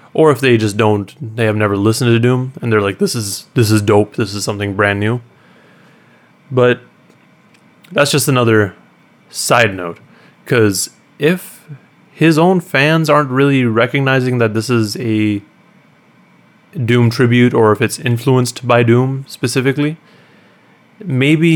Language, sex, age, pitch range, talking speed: English, male, 20-39, 110-145 Hz, 145 wpm